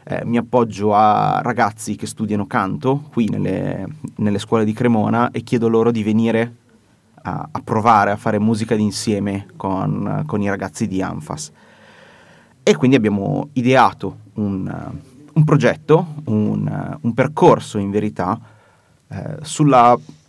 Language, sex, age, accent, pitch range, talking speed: Italian, male, 30-49, native, 105-120 Hz, 130 wpm